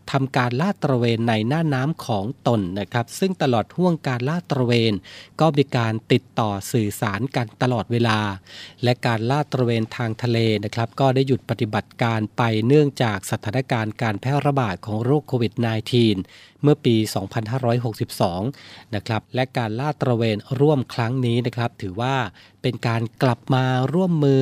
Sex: male